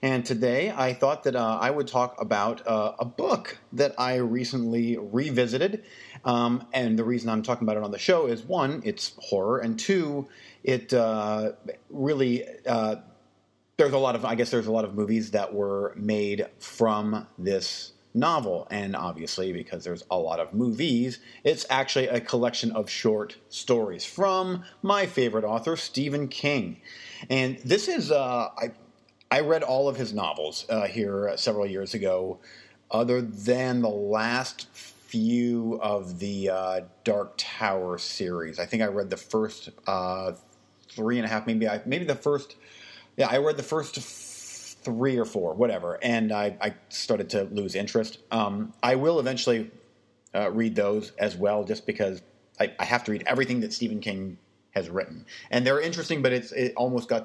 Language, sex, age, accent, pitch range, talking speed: English, male, 40-59, American, 105-130 Hz, 175 wpm